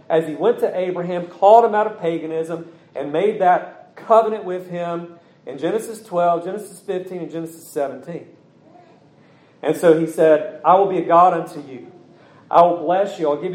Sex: male